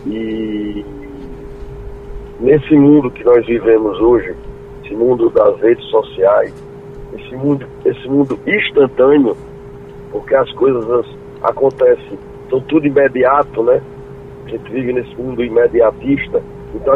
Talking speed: 110 wpm